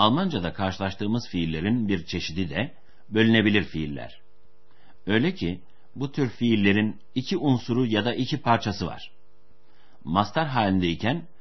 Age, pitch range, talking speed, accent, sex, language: 60-79, 90-120 Hz, 115 wpm, native, male, Turkish